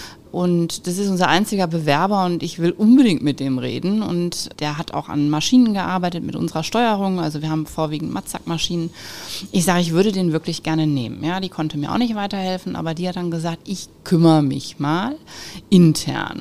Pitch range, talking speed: 150-200 Hz, 195 wpm